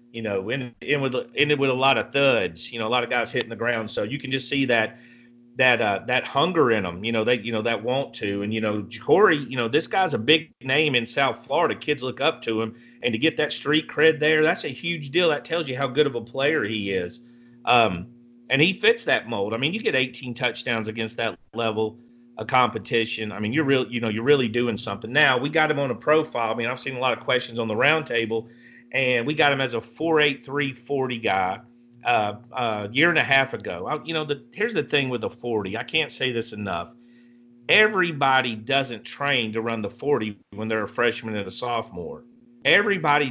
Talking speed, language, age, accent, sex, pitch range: 240 wpm, English, 40-59, American, male, 115-140 Hz